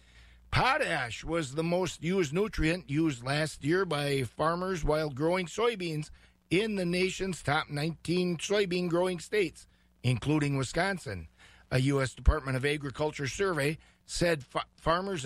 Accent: American